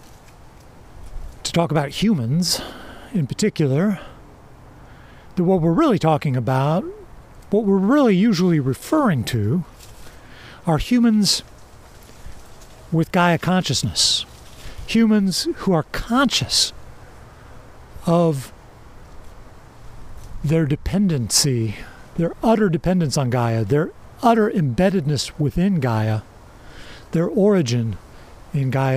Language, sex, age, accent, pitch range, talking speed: English, male, 50-69, American, 130-200 Hz, 90 wpm